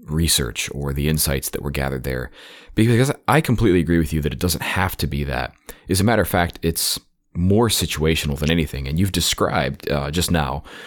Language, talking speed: English, 205 wpm